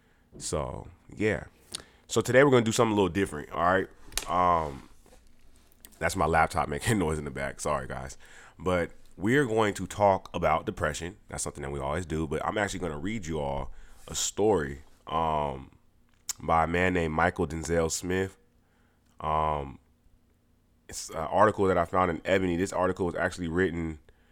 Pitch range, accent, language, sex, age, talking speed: 80-100 Hz, American, English, male, 20-39, 170 wpm